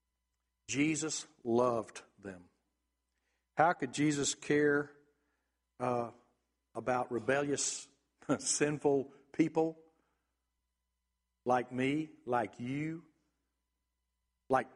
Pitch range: 115-150 Hz